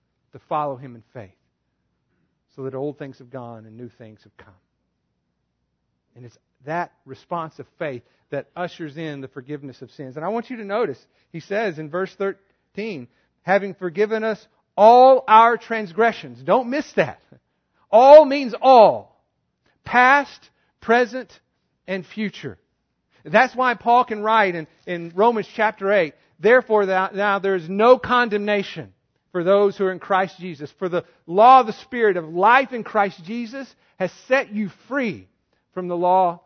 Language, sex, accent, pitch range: English, male, American, 145-220 Hz